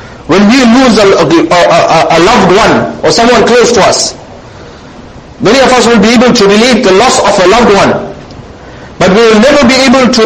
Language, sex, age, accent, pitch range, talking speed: English, male, 50-69, Indian, 205-255 Hz, 200 wpm